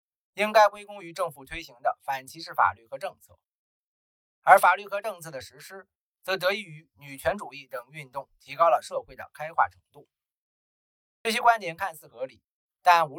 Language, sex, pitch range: Chinese, male, 140-200 Hz